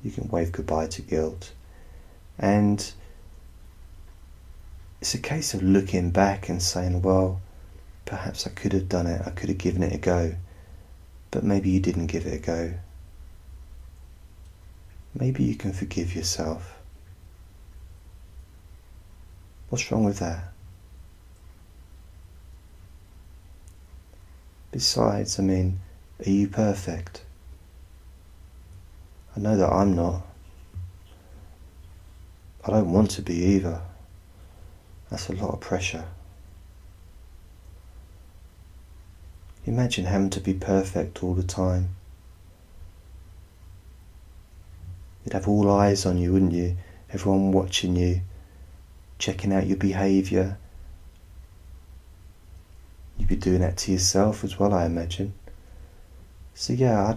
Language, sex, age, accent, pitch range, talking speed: English, male, 30-49, British, 80-95 Hz, 110 wpm